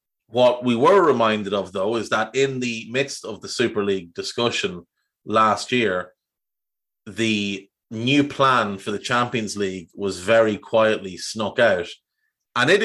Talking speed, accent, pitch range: 150 wpm, Irish, 110-135 Hz